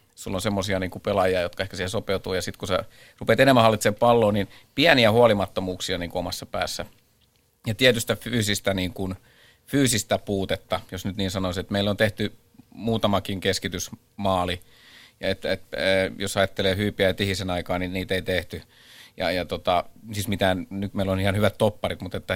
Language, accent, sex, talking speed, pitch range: Finnish, native, male, 175 wpm, 95-105 Hz